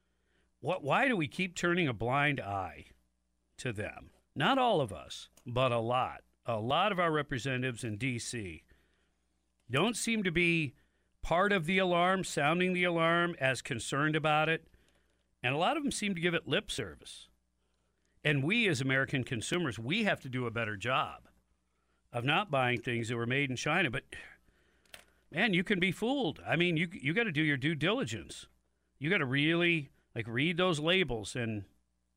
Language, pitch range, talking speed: English, 115-170 Hz, 180 wpm